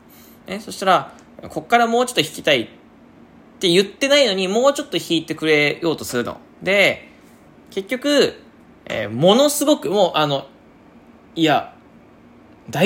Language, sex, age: Japanese, male, 20-39